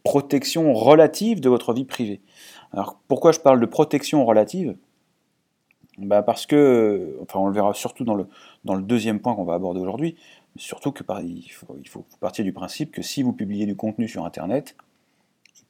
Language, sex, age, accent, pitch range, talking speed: French, male, 30-49, French, 100-130 Hz, 190 wpm